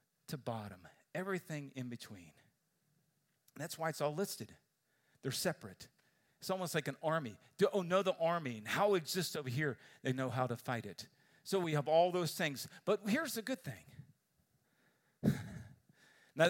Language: English